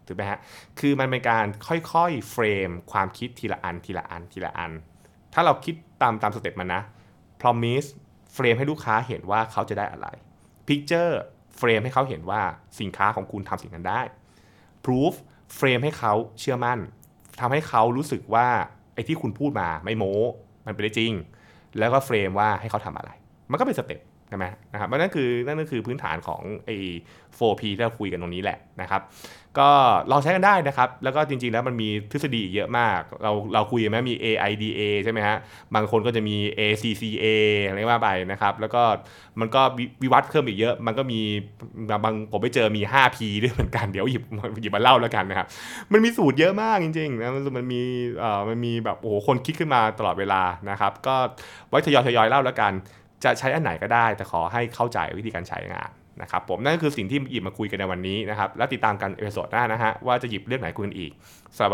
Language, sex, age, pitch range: Thai, male, 20-39, 100-125 Hz